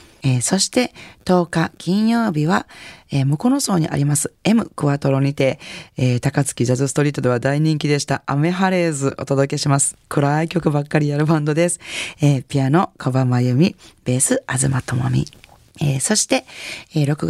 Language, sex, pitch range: Japanese, female, 135-175 Hz